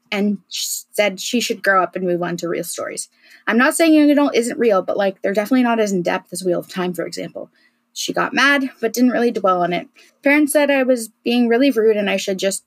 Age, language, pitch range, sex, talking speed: 20-39, English, 190-245 Hz, female, 245 wpm